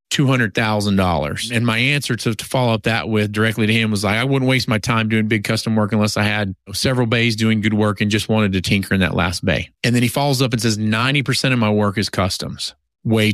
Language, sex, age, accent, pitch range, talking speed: English, male, 30-49, American, 105-130 Hz, 245 wpm